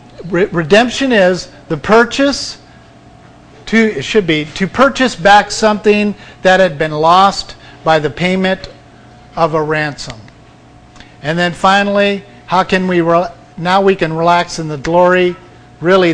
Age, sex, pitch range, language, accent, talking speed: 50-69, male, 150-185 Hz, English, American, 135 wpm